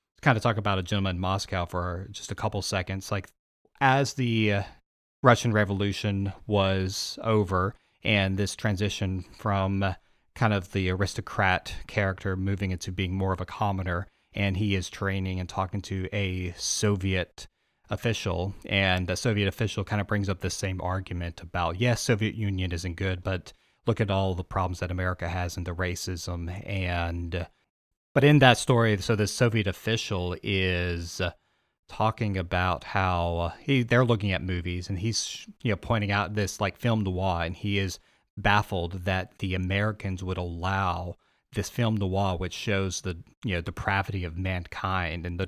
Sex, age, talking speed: male, 30-49, 165 wpm